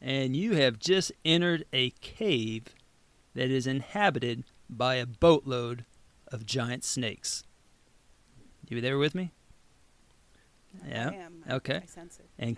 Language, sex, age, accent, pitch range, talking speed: English, male, 40-59, American, 135-195 Hz, 110 wpm